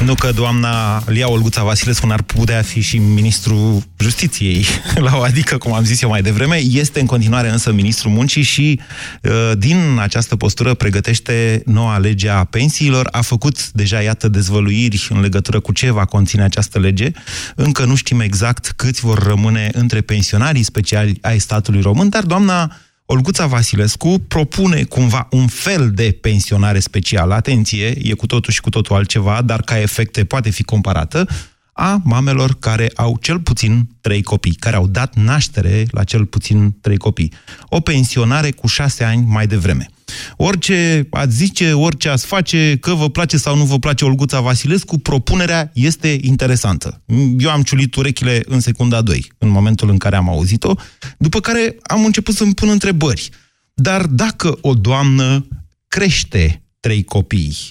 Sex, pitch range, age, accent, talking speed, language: male, 105-135 Hz, 30-49, native, 165 wpm, Romanian